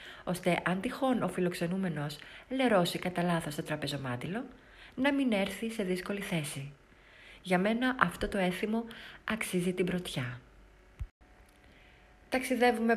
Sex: female